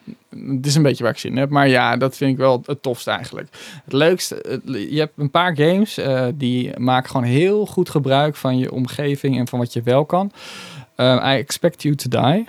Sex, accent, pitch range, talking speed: male, Dutch, 130-160 Hz, 225 wpm